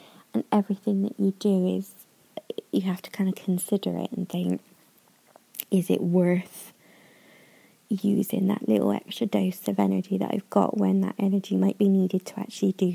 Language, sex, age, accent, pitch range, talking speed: English, female, 20-39, British, 185-230 Hz, 170 wpm